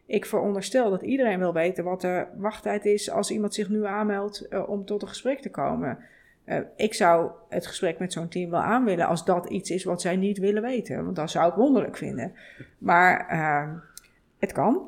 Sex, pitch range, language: female, 170-205 Hz, Dutch